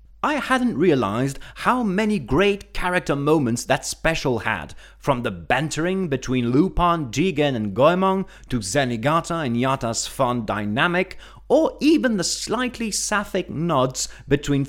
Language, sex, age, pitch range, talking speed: English, male, 30-49, 125-195 Hz, 130 wpm